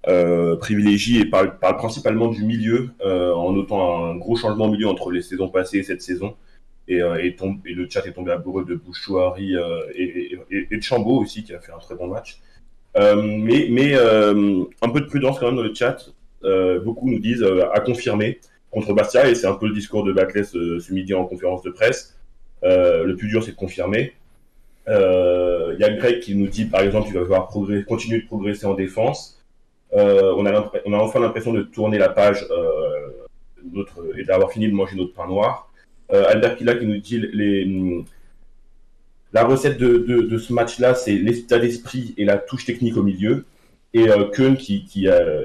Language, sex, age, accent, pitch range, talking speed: French, male, 20-39, French, 95-130 Hz, 220 wpm